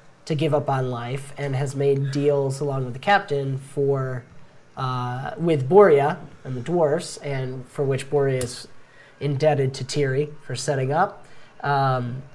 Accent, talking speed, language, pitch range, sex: American, 155 wpm, English, 130-150 Hz, male